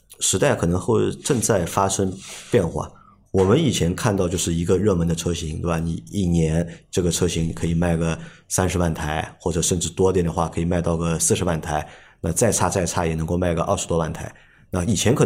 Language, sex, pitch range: Chinese, male, 85-100 Hz